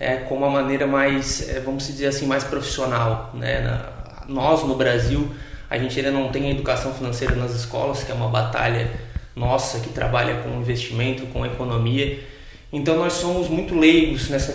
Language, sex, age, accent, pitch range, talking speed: Portuguese, male, 20-39, Brazilian, 120-145 Hz, 175 wpm